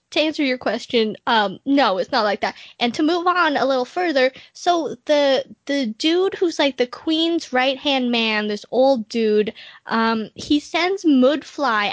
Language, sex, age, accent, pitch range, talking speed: English, female, 10-29, American, 240-335 Hz, 170 wpm